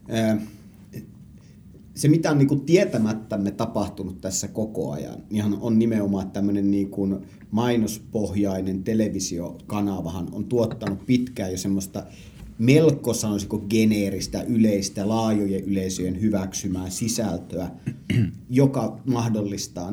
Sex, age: male, 30-49